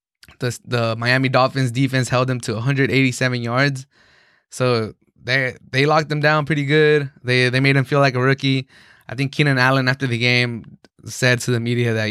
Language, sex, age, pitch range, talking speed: English, male, 20-39, 120-135 Hz, 190 wpm